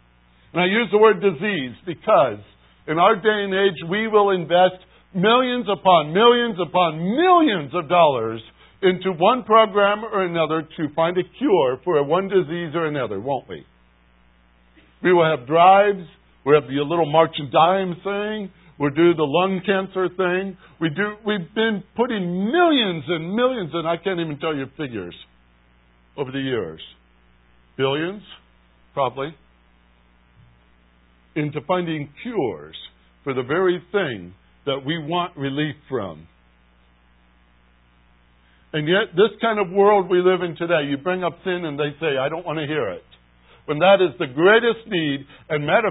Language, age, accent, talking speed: English, 60-79, American, 155 wpm